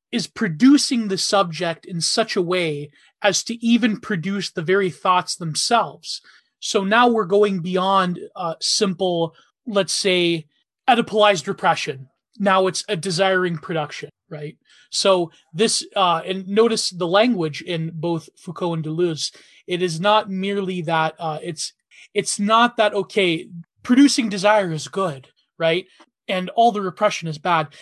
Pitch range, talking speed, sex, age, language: 165-205 Hz, 145 wpm, male, 20-39, English